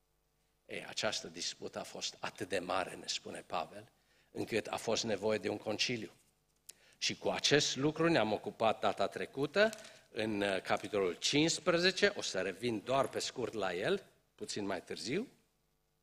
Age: 50-69